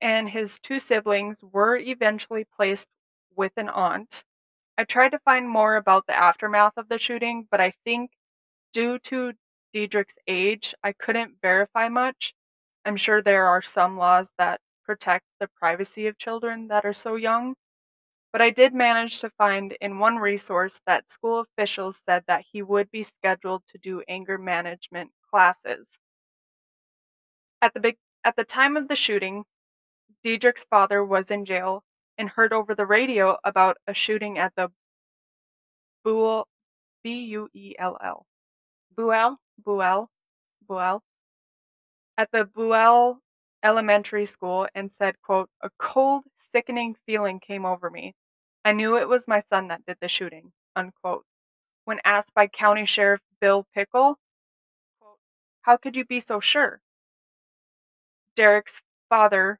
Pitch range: 195-230 Hz